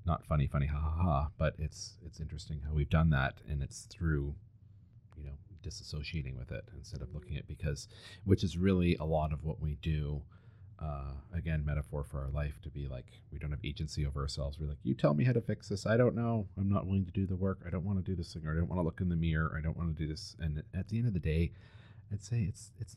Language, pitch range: English, 80-105 Hz